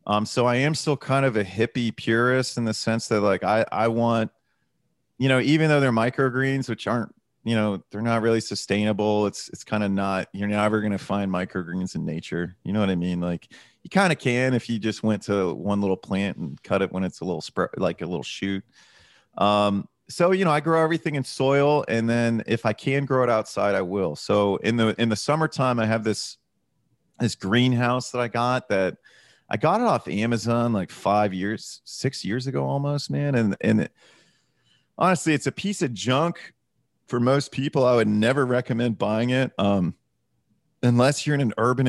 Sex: male